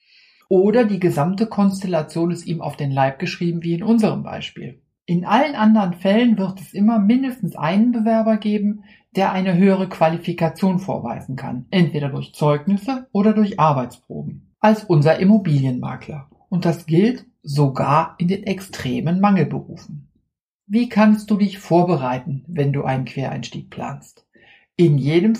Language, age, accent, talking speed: German, 60-79, German, 140 wpm